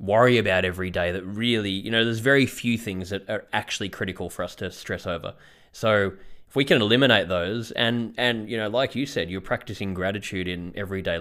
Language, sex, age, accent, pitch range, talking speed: English, male, 20-39, Australian, 95-115 Hz, 210 wpm